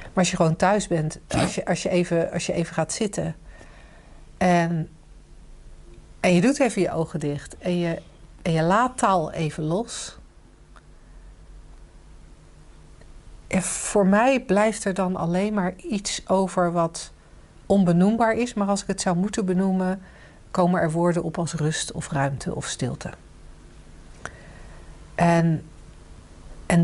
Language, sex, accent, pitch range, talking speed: Dutch, female, Dutch, 160-195 Hz, 145 wpm